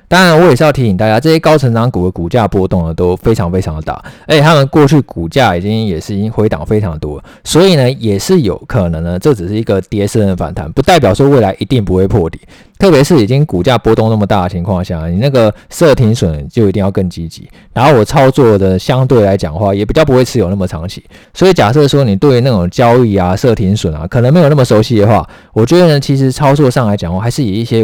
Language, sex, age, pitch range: Chinese, male, 20-39, 95-130 Hz